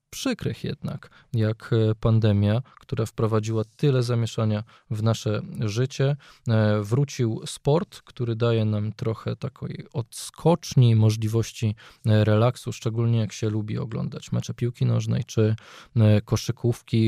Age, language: 20-39, Polish